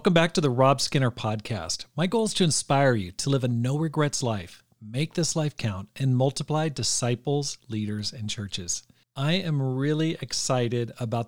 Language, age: English, 40-59